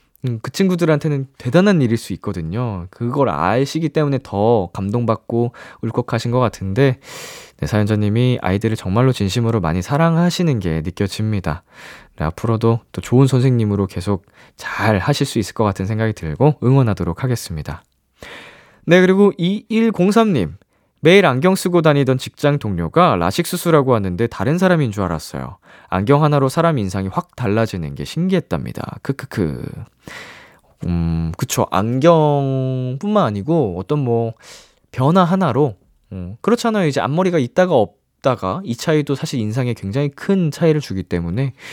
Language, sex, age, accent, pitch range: Korean, male, 20-39, native, 100-165 Hz